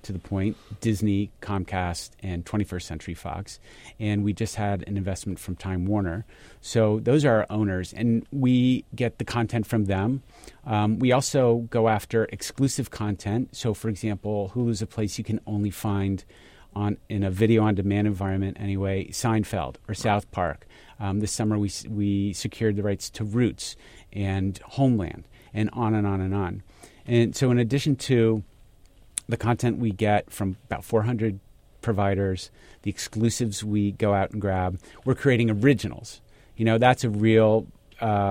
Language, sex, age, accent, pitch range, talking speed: English, male, 40-59, American, 100-115 Hz, 170 wpm